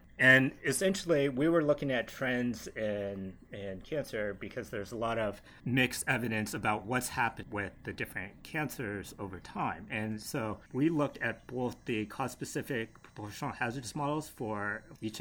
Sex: male